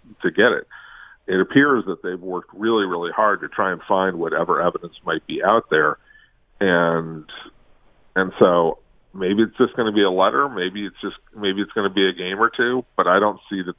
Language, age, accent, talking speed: English, 50-69, American, 215 wpm